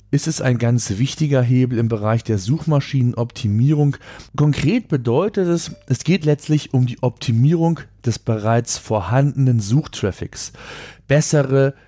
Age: 40-59